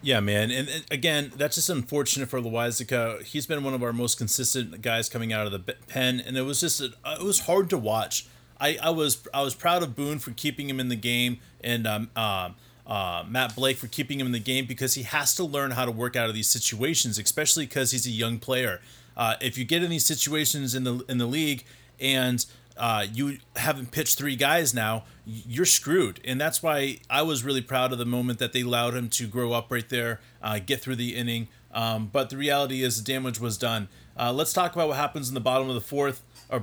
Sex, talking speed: male, 240 wpm